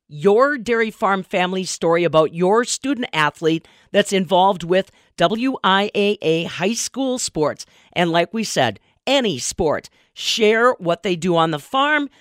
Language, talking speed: English, 145 wpm